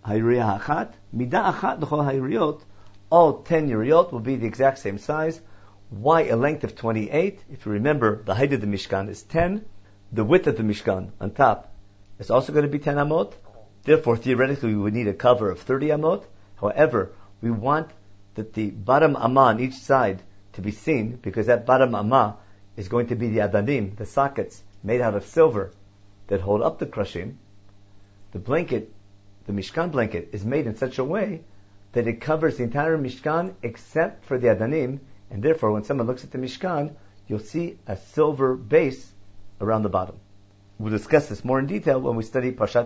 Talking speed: 180 wpm